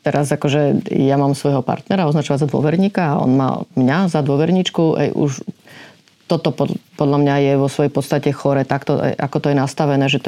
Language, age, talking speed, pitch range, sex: Slovak, 30-49, 180 wpm, 145-160 Hz, female